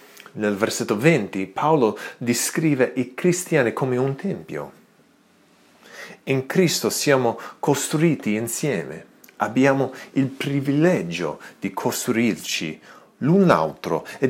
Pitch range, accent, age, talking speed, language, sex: 110-160 Hz, native, 40-59, 95 wpm, Italian, male